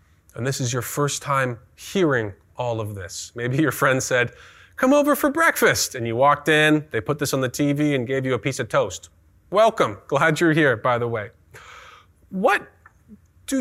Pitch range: 105-145 Hz